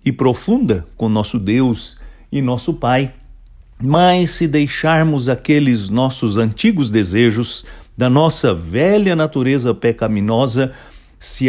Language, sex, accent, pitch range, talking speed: English, male, Brazilian, 110-150 Hz, 110 wpm